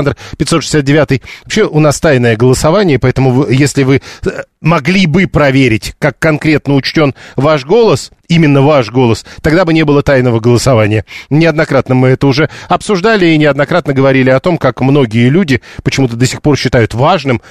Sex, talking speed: male, 160 wpm